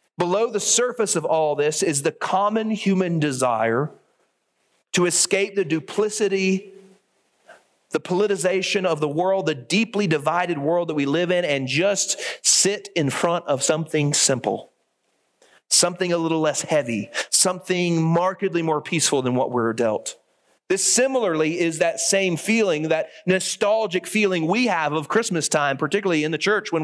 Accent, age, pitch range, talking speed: American, 40-59, 150-190 Hz, 150 wpm